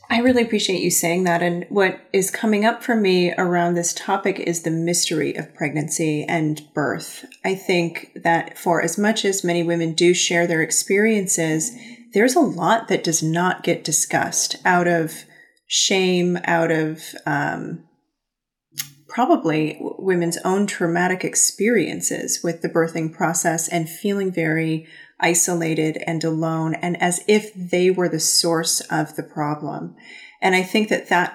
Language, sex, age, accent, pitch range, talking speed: English, female, 30-49, American, 165-205 Hz, 155 wpm